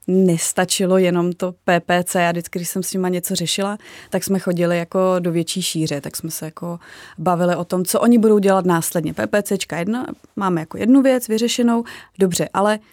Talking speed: 180 wpm